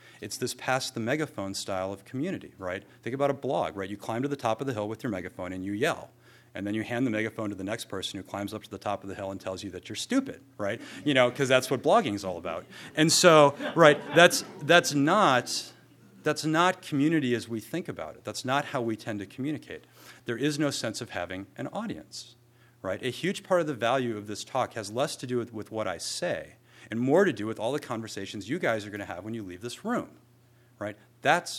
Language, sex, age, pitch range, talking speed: English, male, 40-59, 105-130 Hz, 245 wpm